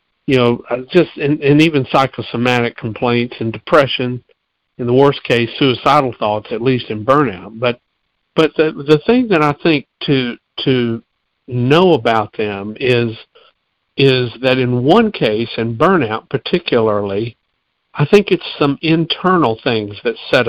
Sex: male